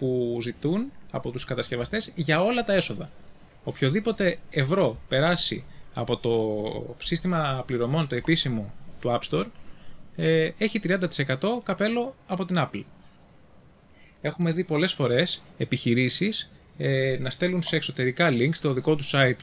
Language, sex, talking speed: Greek, male, 125 wpm